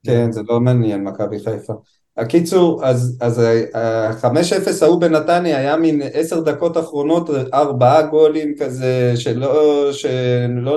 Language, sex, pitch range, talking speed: Hebrew, male, 120-165 Hz, 130 wpm